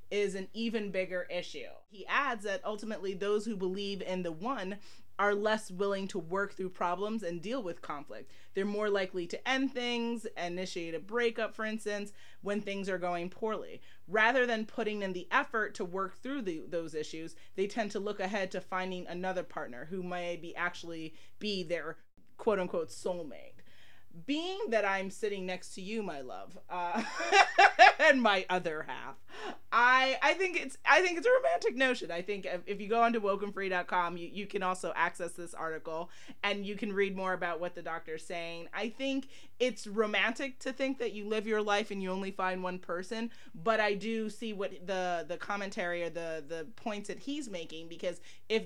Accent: American